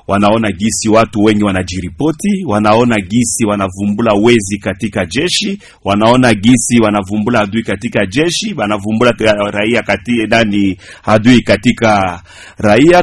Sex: male